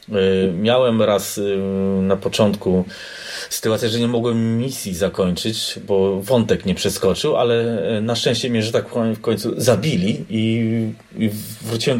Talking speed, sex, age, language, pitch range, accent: 125 wpm, male, 30-49, Polish, 95-115 Hz, native